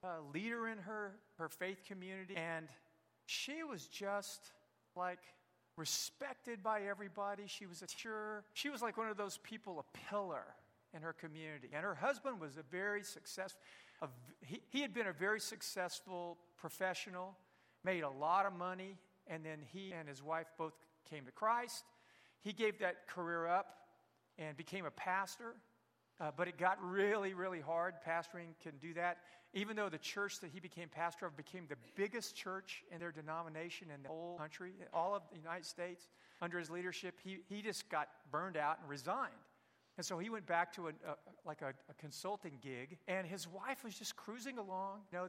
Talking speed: 185 wpm